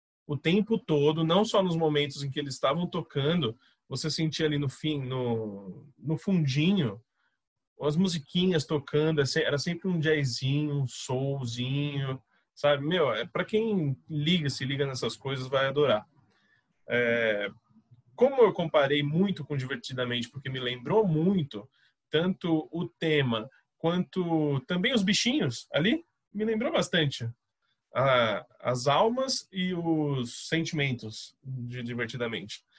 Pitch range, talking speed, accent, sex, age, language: 130-175 Hz, 130 wpm, Brazilian, male, 20-39, Portuguese